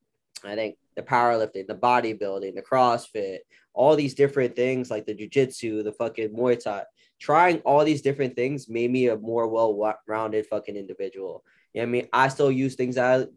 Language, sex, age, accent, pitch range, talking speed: English, male, 10-29, American, 115-130 Hz, 190 wpm